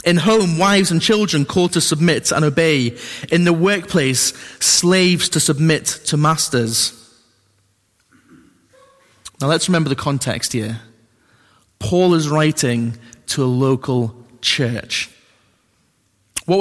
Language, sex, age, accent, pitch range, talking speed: English, male, 20-39, British, 115-170 Hz, 115 wpm